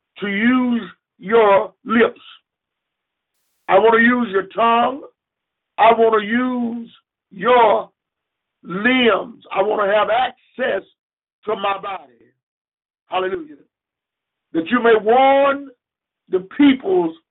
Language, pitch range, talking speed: English, 210-315 Hz, 110 wpm